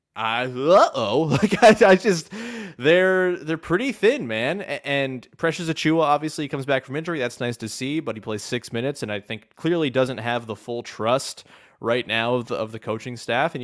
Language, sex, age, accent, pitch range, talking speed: English, male, 20-39, American, 105-160 Hz, 200 wpm